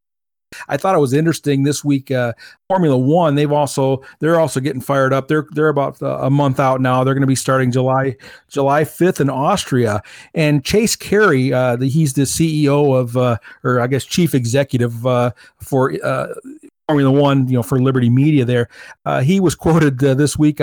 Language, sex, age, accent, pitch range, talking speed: English, male, 50-69, American, 130-160 Hz, 185 wpm